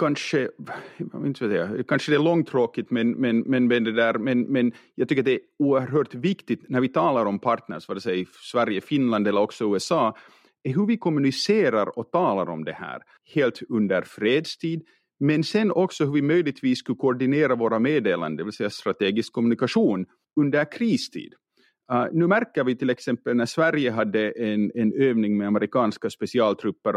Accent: Finnish